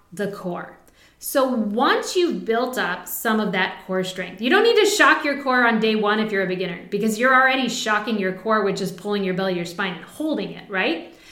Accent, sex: American, female